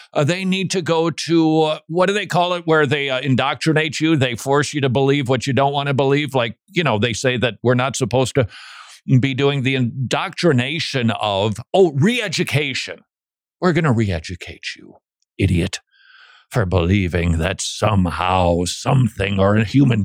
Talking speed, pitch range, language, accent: 175 wpm, 115-170 Hz, English, American